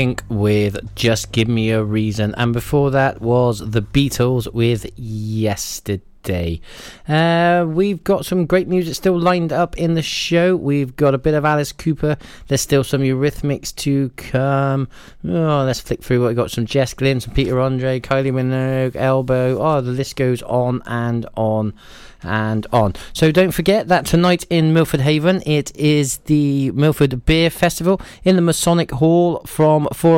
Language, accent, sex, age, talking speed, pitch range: English, British, male, 20-39, 165 wpm, 120-165 Hz